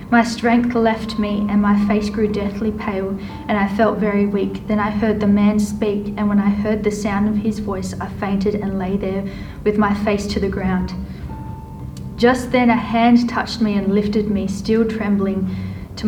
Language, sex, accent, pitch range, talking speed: English, female, Australian, 195-225 Hz, 200 wpm